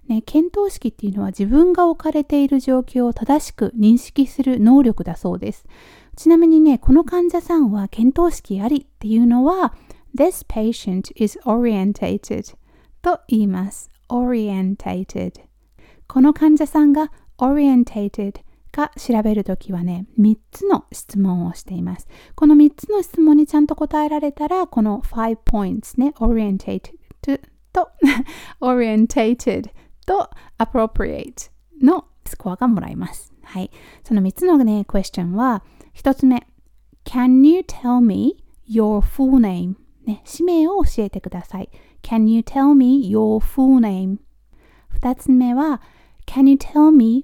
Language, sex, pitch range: Japanese, female, 215-285 Hz